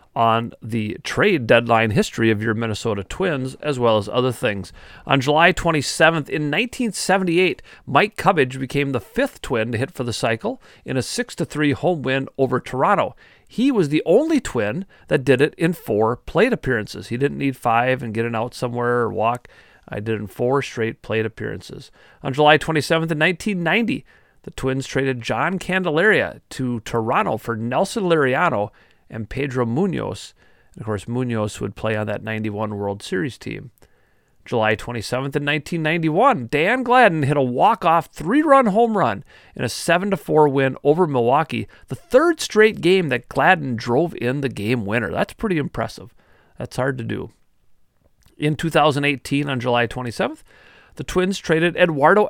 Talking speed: 165 wpm